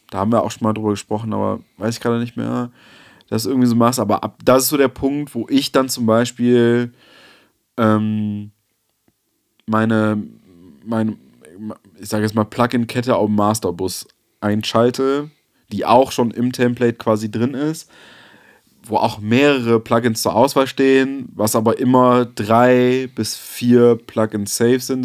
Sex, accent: male, German